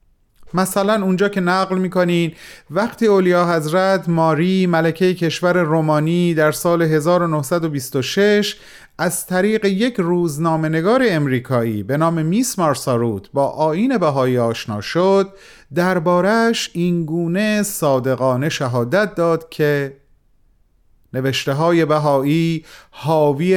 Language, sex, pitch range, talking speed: Persian, male, 140-190 Hz, 95 wpm